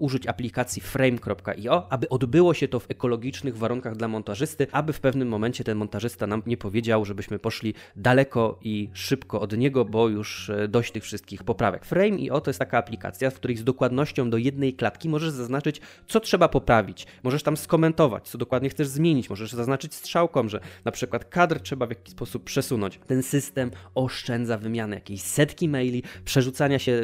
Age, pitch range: 20-39, 110-145 Hz